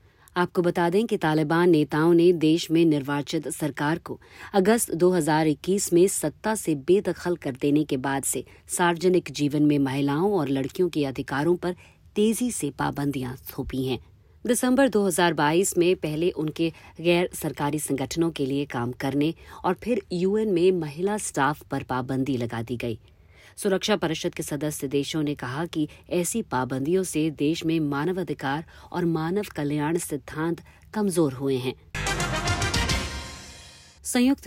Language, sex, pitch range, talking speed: Hindi, female, 135-180 Hz, 145 wpm